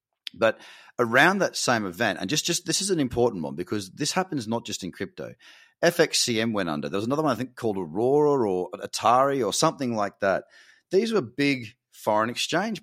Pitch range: 95-145 Hz